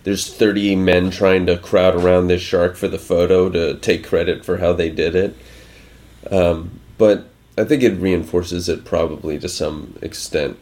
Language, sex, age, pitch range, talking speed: English, male, 30-49, 90-110 Hz, 175 wpm